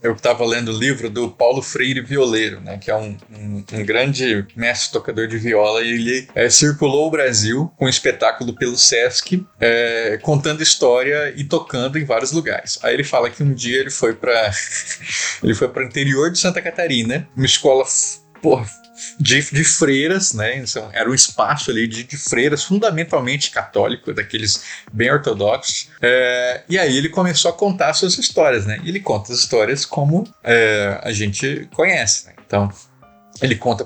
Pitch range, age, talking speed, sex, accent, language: 115-150 Hz, 20-39, 170 wpm, male, Brazilian, Portuguese